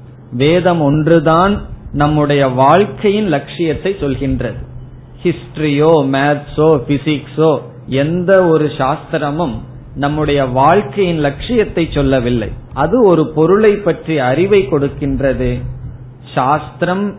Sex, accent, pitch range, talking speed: male, native, 130-165 Hz, 80 wpm